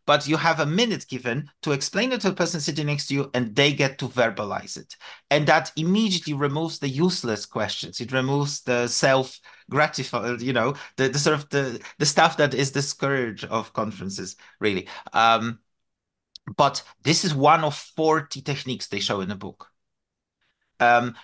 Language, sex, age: English, male, 30-49